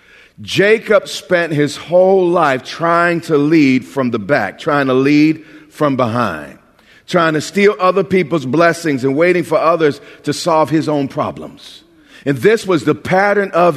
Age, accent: 40-59, American